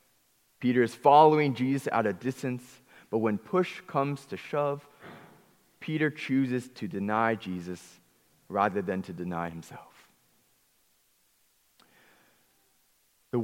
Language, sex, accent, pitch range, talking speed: English, male, American, 115-155 Hz, 105 wpm